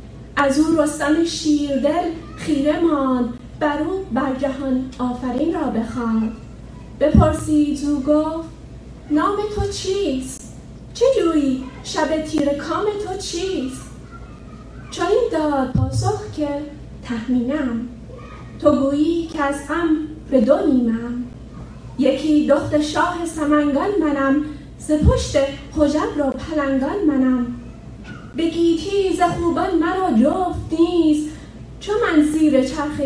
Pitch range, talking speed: 260-325 Hz, 105 wpm